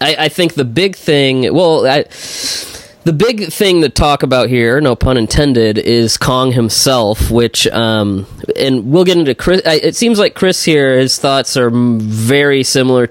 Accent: American